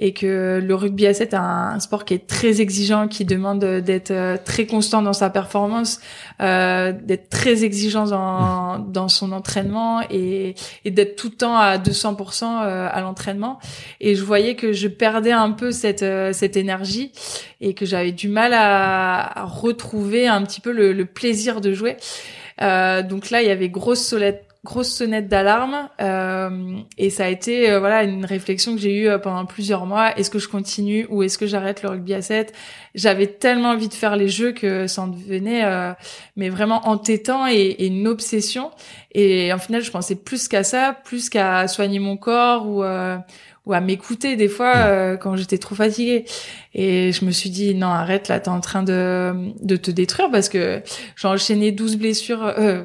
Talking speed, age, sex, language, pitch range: 195 wpm, 20-39, female, French, 190-220 Hz